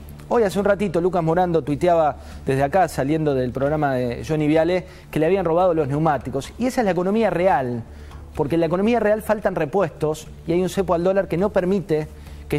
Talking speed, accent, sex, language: 210 wpm, Argentinian, male, Spanish